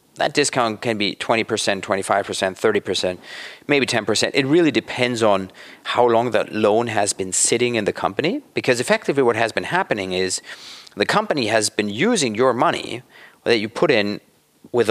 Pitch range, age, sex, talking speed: 110-145 Hz, 40-59, male, 170 wpm